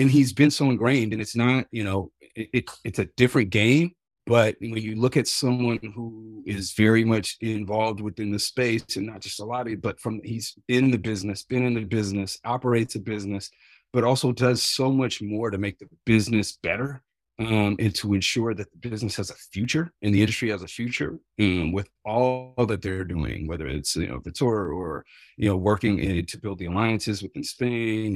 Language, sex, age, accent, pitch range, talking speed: English, male, 30-49, American, 95-120 Hz, 215 wpm